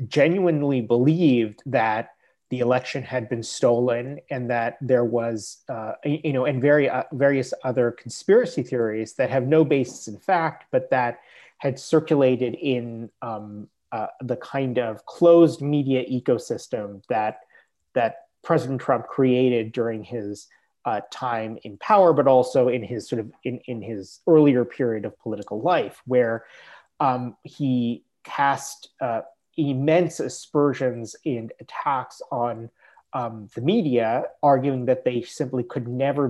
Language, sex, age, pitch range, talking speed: English, male, 30-49, 120-145 Hz, 140 wpm